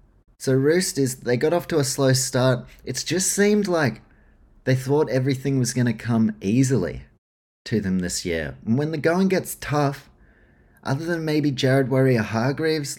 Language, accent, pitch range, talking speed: English, Australian, 110-145 Hz, 170 wpm